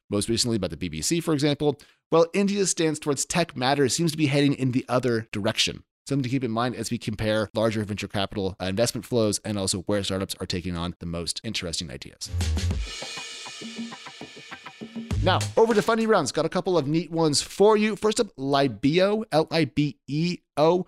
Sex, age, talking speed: male, 30-49, 180 wpm